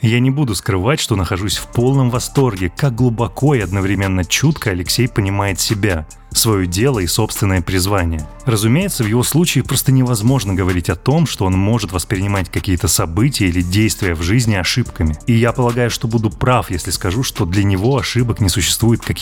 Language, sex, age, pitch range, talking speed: Russian, male, 20-39, 95-125 Hz, 180 wpm